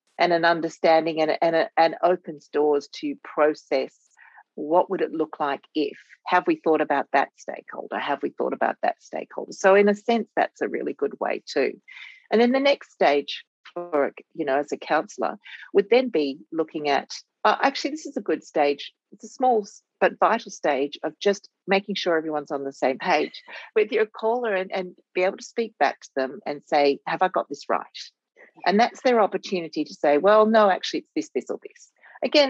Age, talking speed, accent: 40-59, 200 wpm, Australian